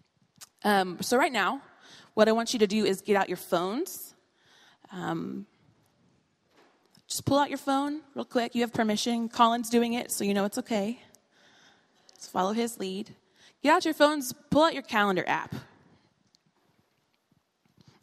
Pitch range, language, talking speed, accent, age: 195-245 Hz, English, 160 wpm, American, 20-39